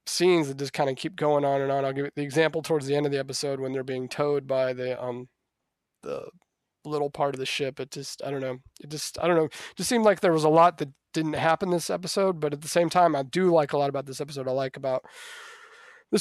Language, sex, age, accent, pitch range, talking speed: English, male, 30-49, American, 130-160 Hz, 270 wpm